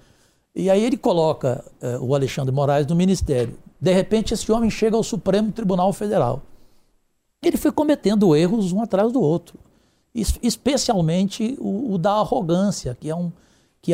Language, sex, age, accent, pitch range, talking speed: English, male, 60-79, Brazilian, 140-185 Hz, 140 wpm